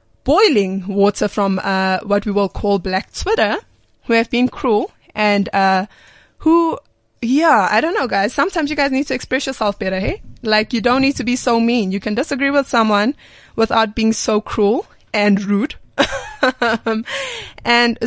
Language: English